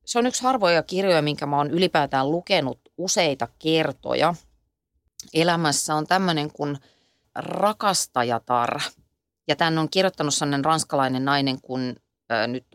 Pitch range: 130-170 Hz